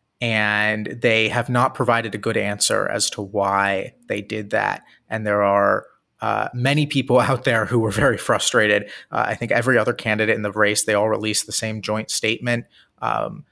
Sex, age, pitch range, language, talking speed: male, 30-49, 105-120 Hz, English, 190 wpm